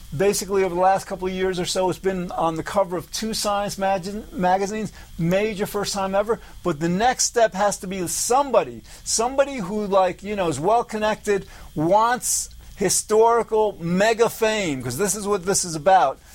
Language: English